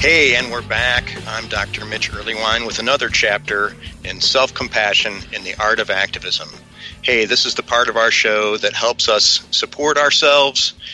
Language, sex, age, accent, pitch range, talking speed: English, male, 40-59, American, 110-135 Hz, 170 wpm